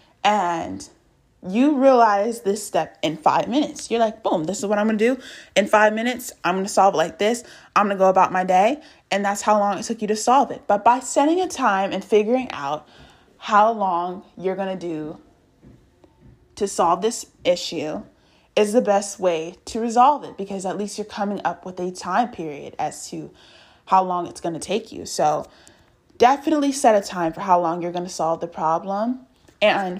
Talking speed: 210 wpm